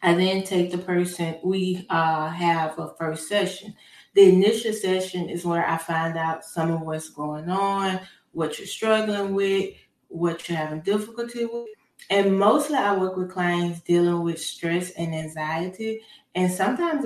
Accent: American